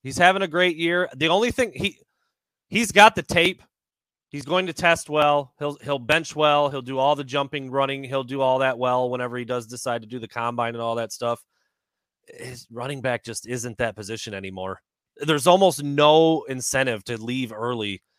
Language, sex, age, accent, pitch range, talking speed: English, male, 30-49, American, 115-150 Hz, 200 wpm